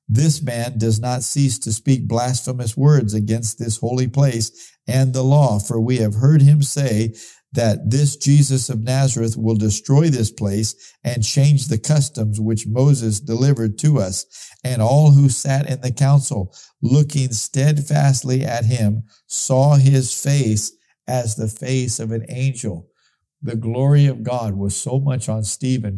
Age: 50-69